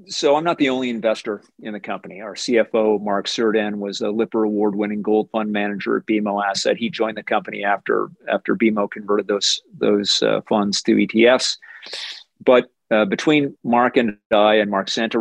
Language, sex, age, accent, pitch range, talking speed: English, male, 40-59, American, 105-120 Hz, 180 wpm